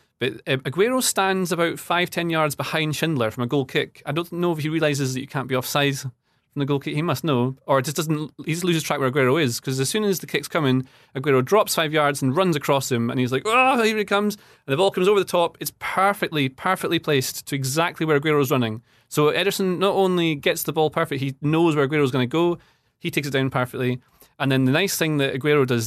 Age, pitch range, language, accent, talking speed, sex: 30-49, 130-165 Hz, English, British, 240 wpm, male